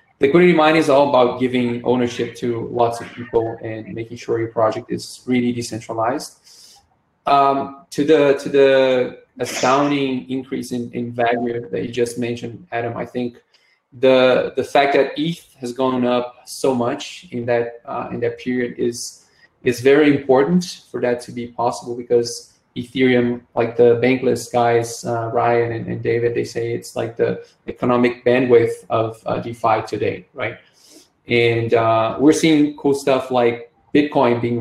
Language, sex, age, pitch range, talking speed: English, male, 20-39, 115-130 Hz, 160 wpm